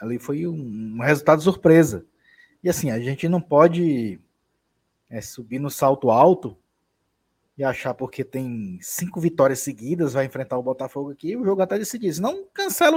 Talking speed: 160 wpm